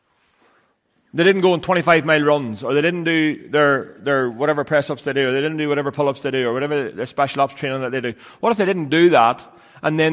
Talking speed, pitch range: 265 wpm, 125-165 Hz